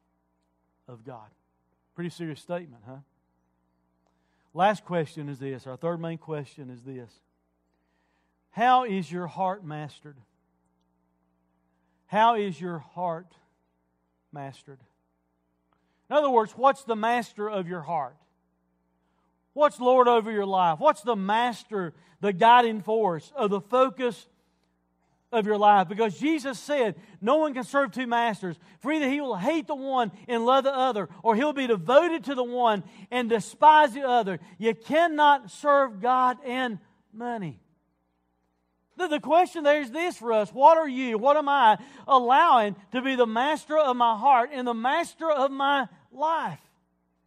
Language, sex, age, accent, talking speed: English, male, 40-59, American, 150 wpm